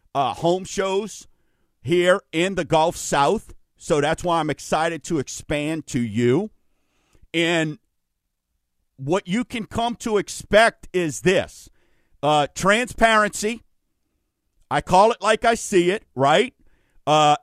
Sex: male